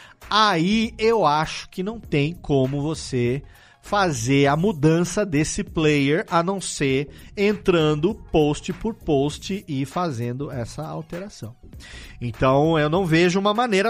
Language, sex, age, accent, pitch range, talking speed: Portuguese, male, 40-59, Brazilian, 145-195 Hz, 130 wpm